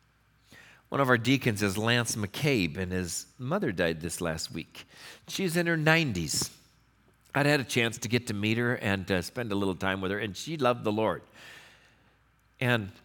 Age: 50-69